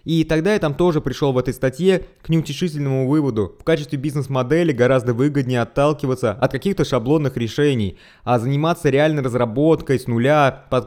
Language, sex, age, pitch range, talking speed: Russian, male, 20-39, 120-155 Hz, 160 wpm